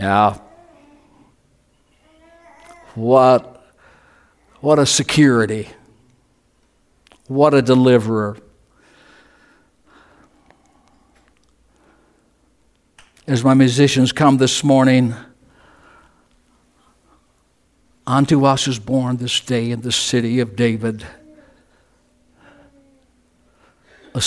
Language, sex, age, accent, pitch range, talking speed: English, male, 60-79, American, 125-205 Hz, 65 wpm